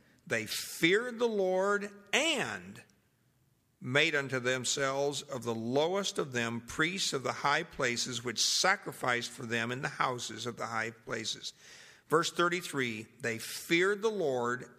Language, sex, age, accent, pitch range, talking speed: English, male, 50-69, American, 125-155 Hz, 140 wpm